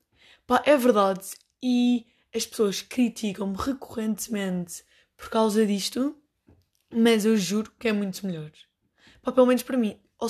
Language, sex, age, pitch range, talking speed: Portuguese, female, 20-39, 195-235 Hz, 135 wpm